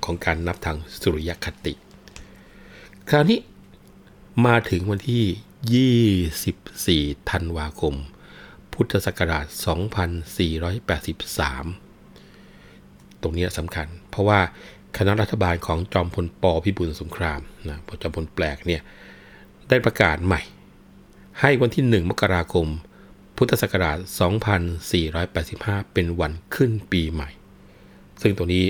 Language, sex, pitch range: Thai, male, 85-100 Hz